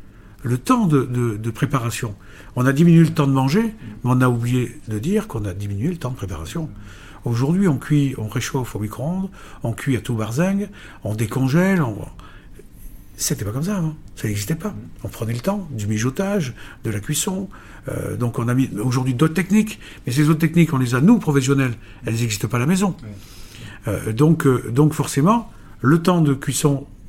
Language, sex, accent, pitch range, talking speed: French, male, French, 110-150 Hz, 195 wpm